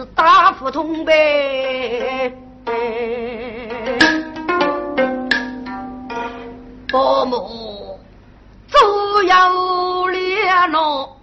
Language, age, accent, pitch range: Chinese, 50-69, American, 255-365 Hz